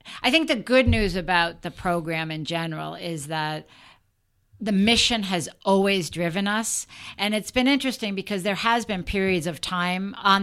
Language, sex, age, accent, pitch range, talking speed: English, female, 50-69, American, 175-215 Hz, 175 wpm